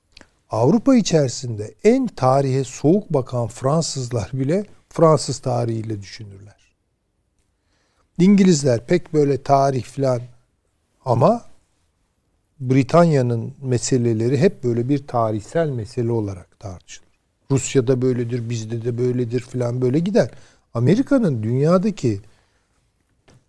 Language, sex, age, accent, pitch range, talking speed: Turkish, male, 60-79, native, 110-145 Hz, 90 wpm